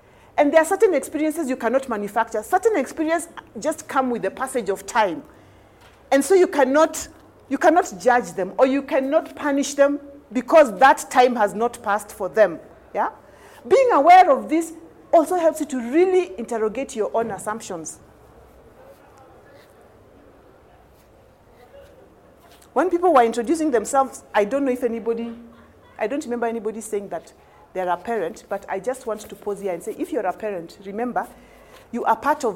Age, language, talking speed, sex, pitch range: 40-59, English, 165 wpm, female, 200-285 Hz